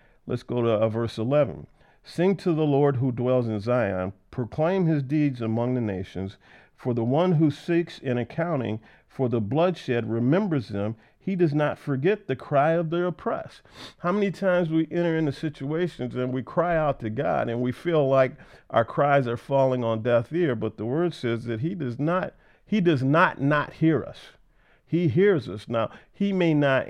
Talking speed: 190 wpm